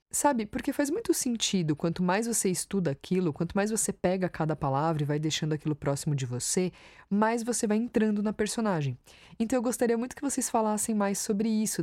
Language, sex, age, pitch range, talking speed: Portuguese, female, 20-39, 165-225 Hz, 200 wpm